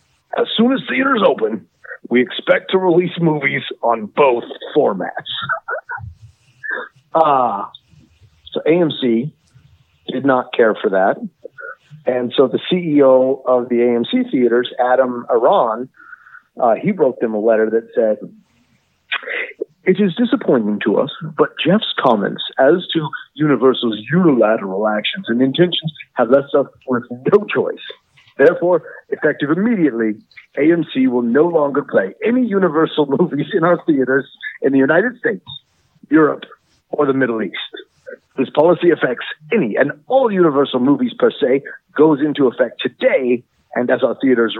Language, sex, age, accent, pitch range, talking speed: English, male, 50-69, American, 125-190 Hz, 135 wpm